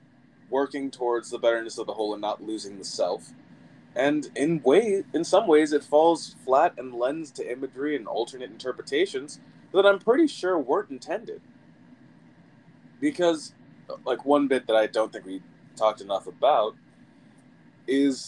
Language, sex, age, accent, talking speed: English, male, 20-39, American, 155 wpm